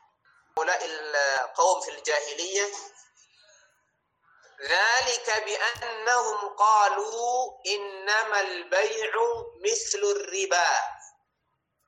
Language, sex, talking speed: Indonesian, male, 55 wpm